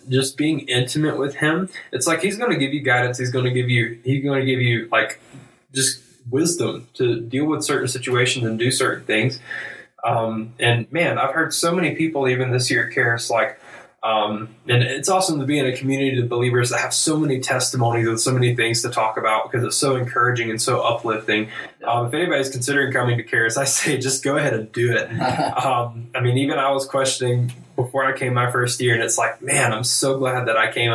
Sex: male